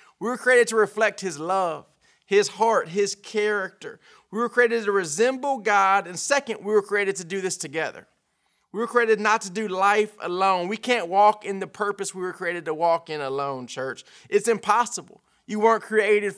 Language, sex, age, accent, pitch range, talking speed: English, male, 30-49, American, 175-220 Hz, 195 wpm